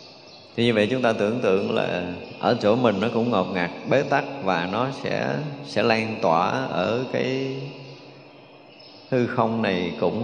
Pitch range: 95-115 Hz